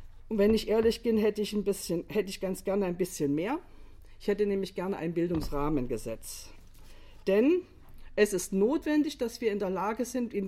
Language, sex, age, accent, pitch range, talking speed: German, female, 50-69, German, 180-240 Hz, 190 wpm